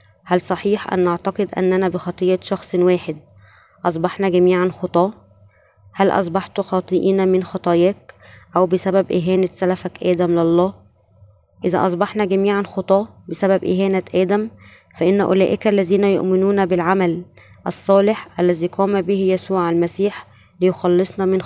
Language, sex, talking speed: Arabic, female, 115 wpm